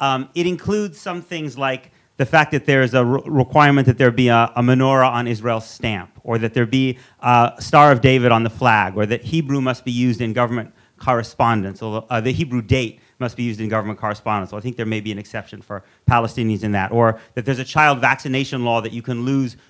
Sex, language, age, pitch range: male, English, 40-59, 120-140 Hz